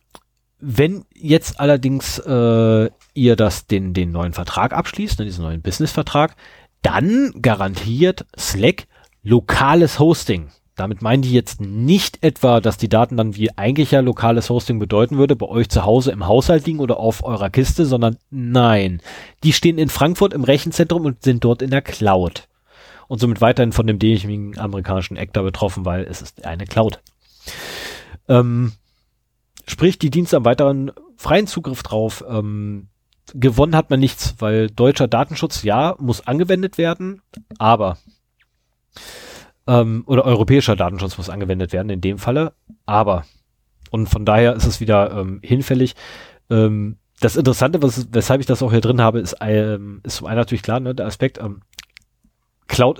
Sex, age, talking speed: male, 30-49, 155 wpm